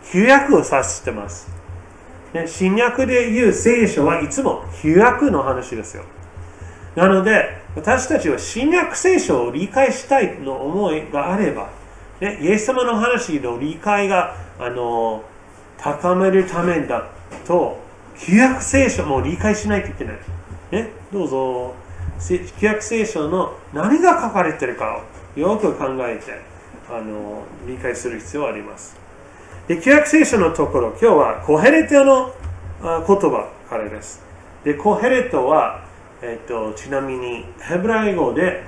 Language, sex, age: Japanese, male, 30-49